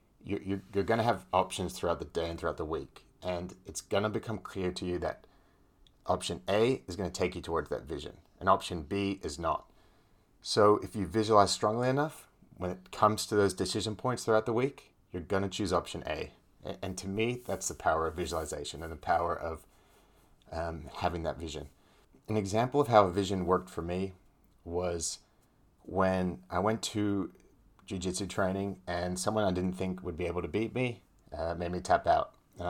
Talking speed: 190 wpm